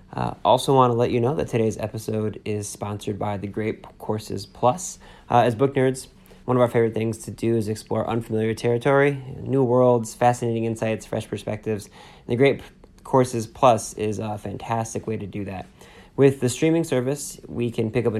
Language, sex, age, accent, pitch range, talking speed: English, male, 20-39, American, 105-120 Hz, 190 wpm